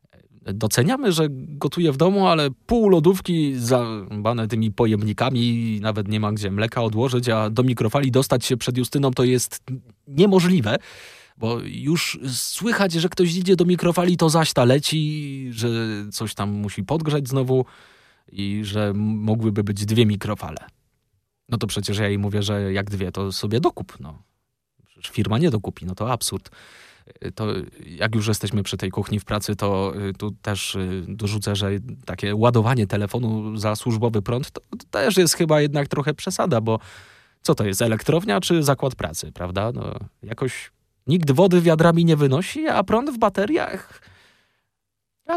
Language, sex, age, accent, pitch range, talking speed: Polish, male, 20-39, native, 105-150 Hz, 155 wpm